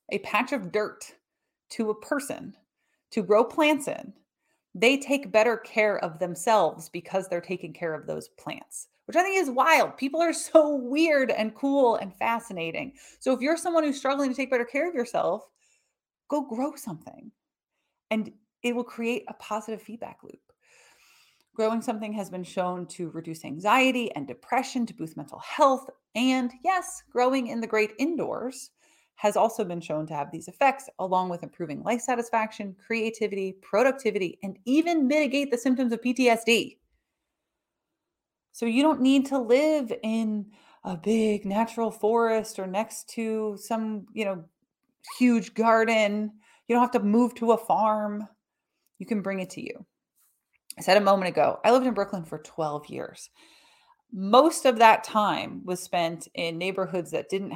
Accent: American